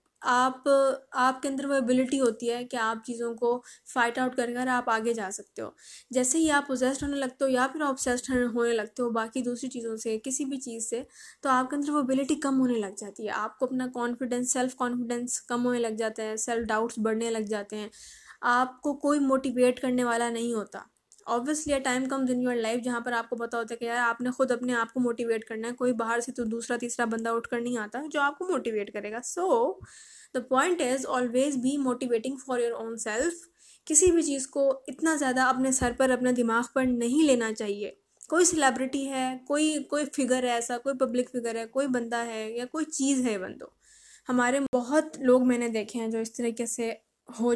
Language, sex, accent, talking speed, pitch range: English, female, Indian, 165 wpm, 235-270 Hz